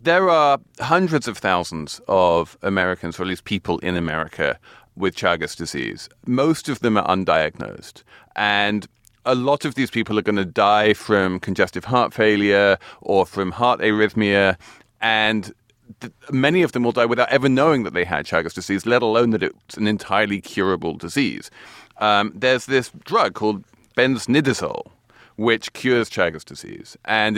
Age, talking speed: 30-49, 160 wpm